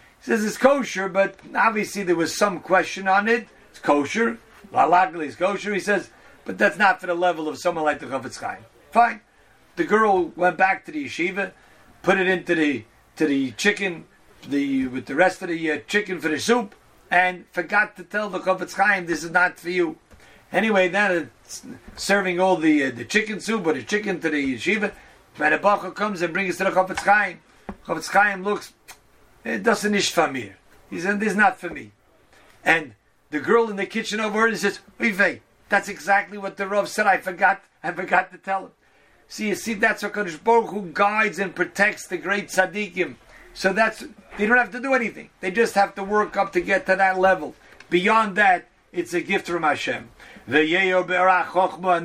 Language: English